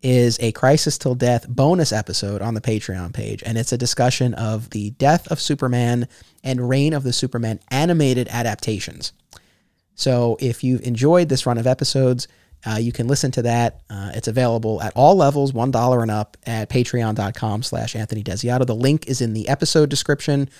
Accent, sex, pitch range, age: American, male, 115-150 Hz, 30-49